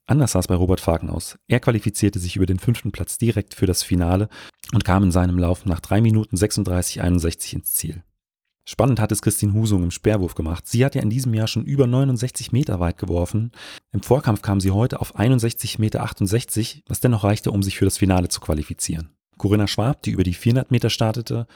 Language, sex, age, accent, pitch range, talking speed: German, male, 40-59, German, 95-115 Hz, 205 wpm